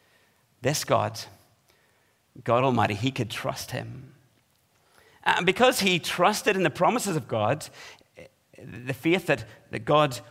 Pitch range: 120-155 Hz